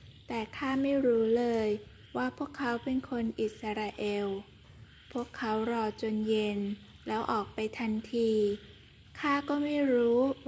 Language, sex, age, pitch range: Thai, female, 20-39, 210-255 Hz